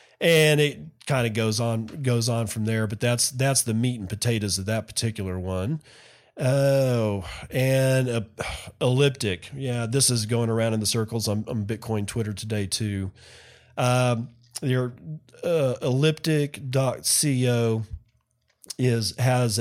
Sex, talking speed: male, 140 wpm